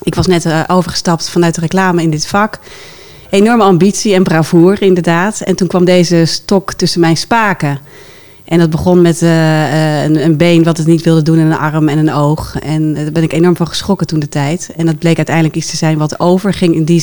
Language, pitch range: Dutch, 155-180 Hz